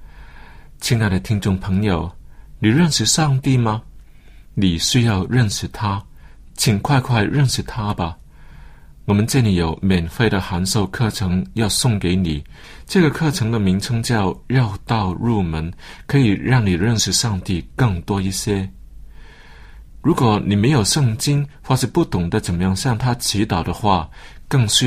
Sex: male